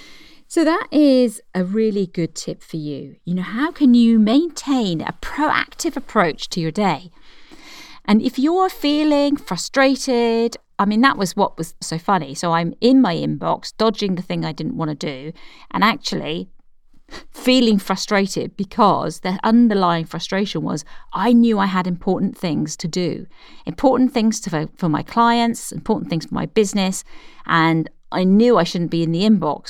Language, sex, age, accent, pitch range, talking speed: English, female, 40-59, British, 175-245 Hz, 170 wpm